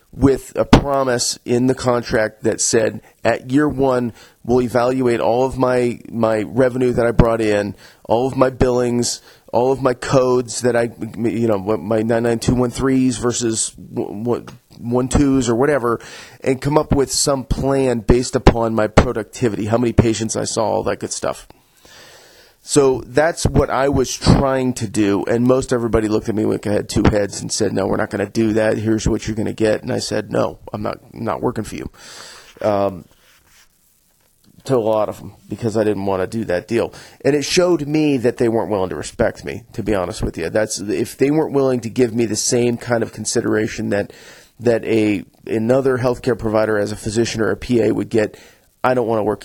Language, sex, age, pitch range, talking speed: English, male, 30-49, 110-130 Hz, 210 wpm